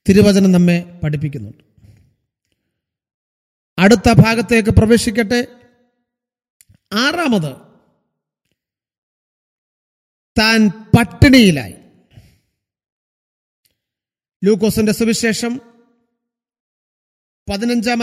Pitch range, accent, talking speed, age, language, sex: 175-240 Hz, native, 40 wpm, 40-59, Malayalam, male